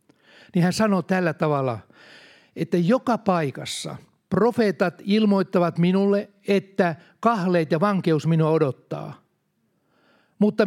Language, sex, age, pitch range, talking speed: Finnish, male, 60-79, 155-200 Hz, 100 wpm